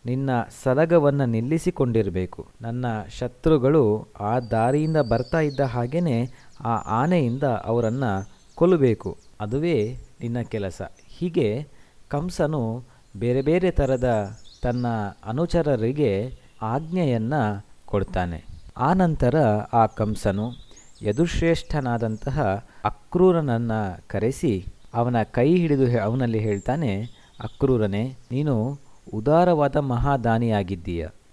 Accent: native